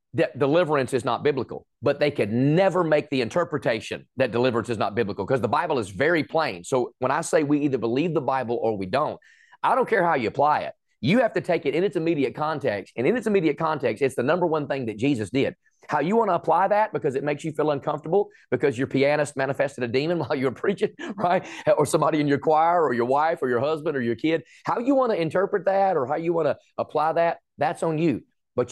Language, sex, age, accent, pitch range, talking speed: English, male, 30-49, American, 135-165 Hz, 245 wpm